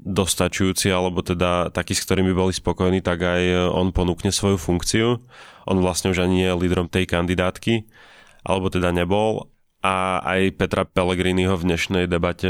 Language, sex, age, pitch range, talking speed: Slovak, male, 30-49, 90-95 Hz, 155 wpm